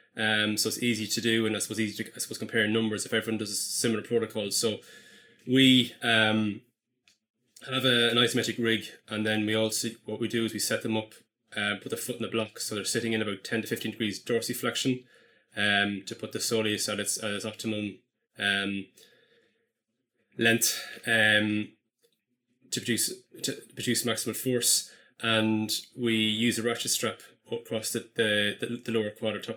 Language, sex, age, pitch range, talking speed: English, male, 20-39, 105-115 Hz, 185 wpm